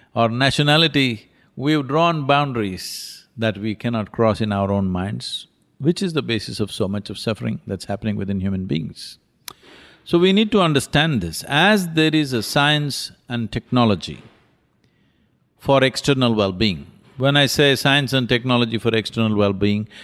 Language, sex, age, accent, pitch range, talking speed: English, male, 50-69, Indian, 105-150 Hz, 155 wpm